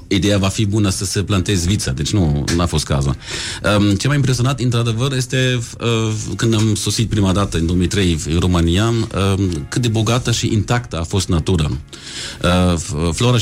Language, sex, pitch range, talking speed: Romanian, male, 90-115 Hz, 160 wpm